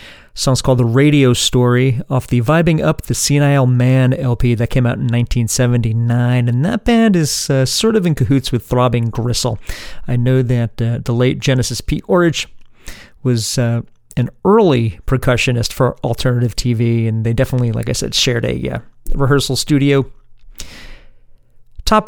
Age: 40-59